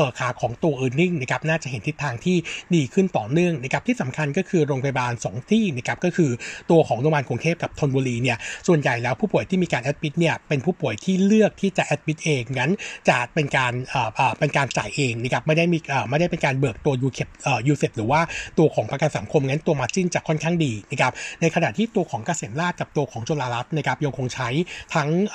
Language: Thai